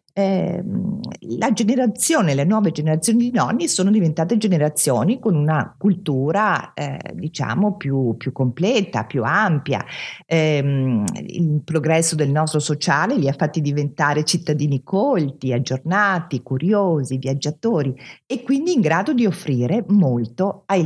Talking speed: 125 wpm